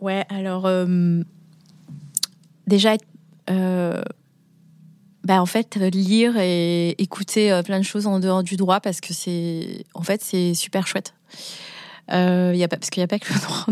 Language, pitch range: French, 175-200 Hz